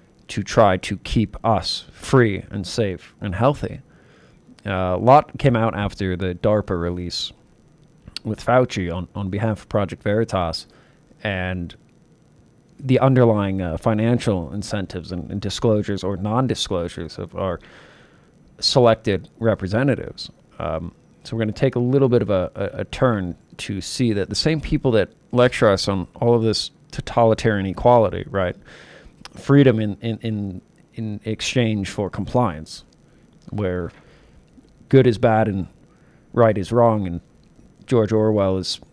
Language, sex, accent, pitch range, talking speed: English, male, American, 95-125 Hz, 140 wpm